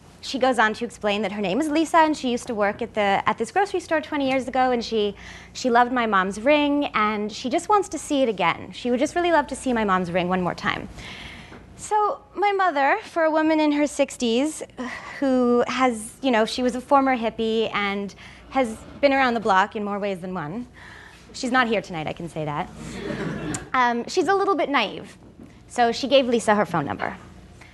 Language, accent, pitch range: English, American, 200-270 Hz